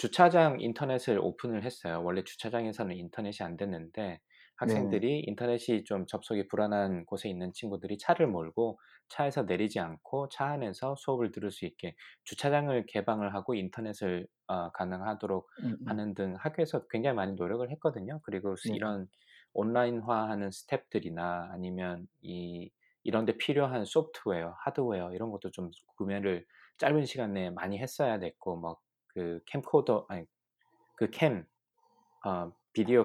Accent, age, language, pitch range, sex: native, 20-39, Korean, 95-125 Hz, male